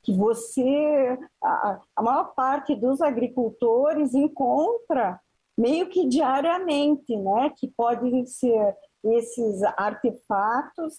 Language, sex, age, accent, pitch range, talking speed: English, female, 40-59, Brazilian, 225-290 Hz, 100 wpm